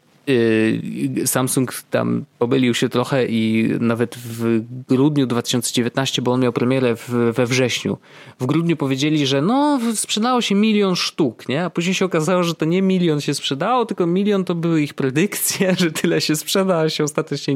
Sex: male